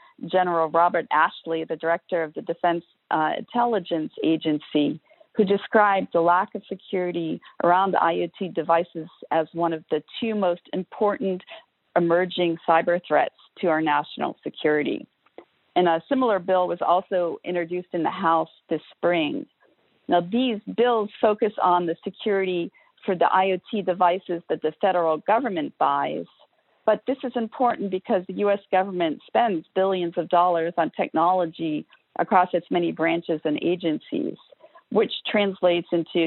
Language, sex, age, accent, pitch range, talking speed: English, female, 50-69, American, 165-200 Hz, 140 wpm